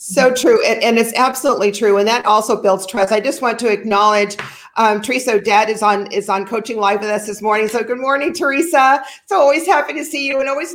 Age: 50-69